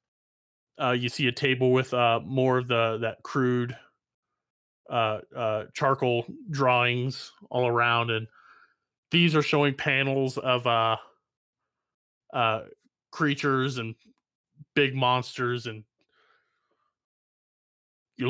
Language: English